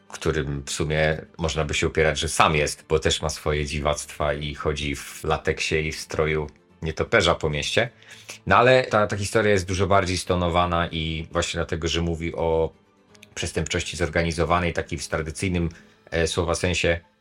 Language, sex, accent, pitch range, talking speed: Polish, male, native, 80-100 Hz, 165 wpm